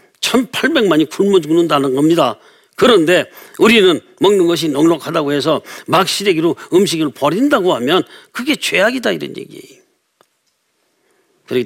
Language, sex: Korean, male